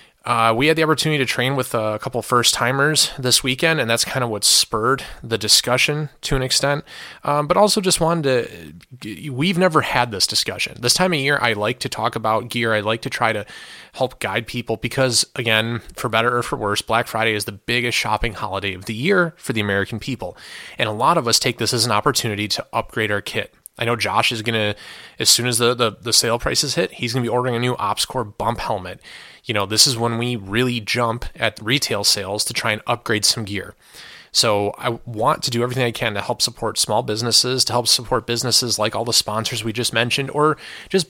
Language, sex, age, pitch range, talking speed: English, male, 30-49, 110-130 Hz, 225 wpm